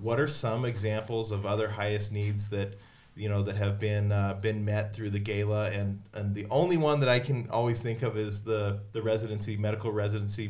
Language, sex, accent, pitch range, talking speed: English, male, American, 105-115 Hz, 210 wpm